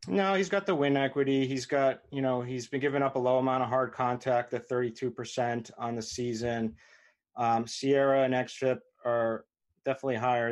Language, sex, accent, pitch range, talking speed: English, male, American, 110-125 Hz, 185 wpm